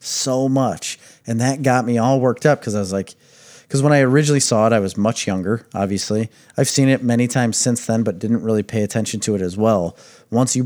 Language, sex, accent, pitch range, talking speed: English, male, American, 100-125 Hz, 235 wpm